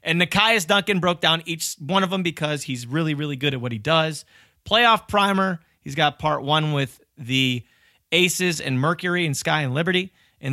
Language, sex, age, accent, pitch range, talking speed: English, male, 30-49, American, 130-185 Hz, 195 wpm